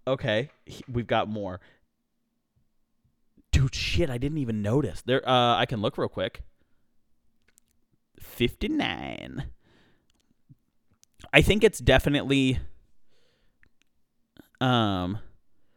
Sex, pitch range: male, 105-145 Hz